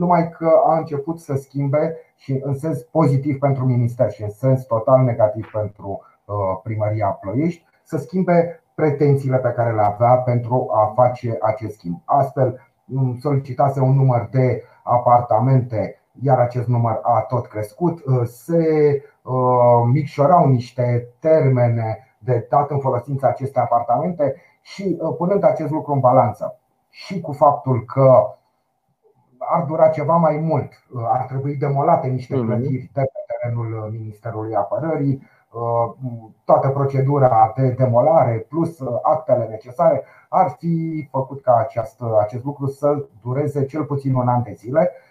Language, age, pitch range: Romanian, 30-49, 120-150 Hz